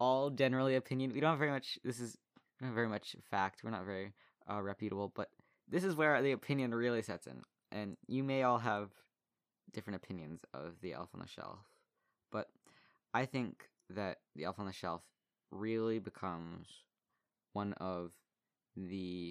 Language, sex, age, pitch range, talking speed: English, male, 20-39, 95-120 Hz, 170 wpm